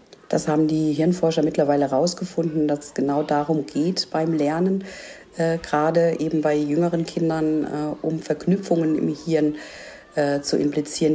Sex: female